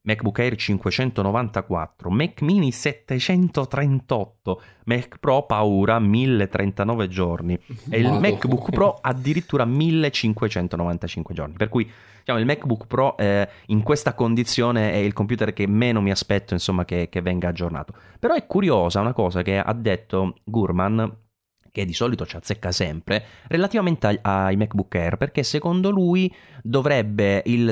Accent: native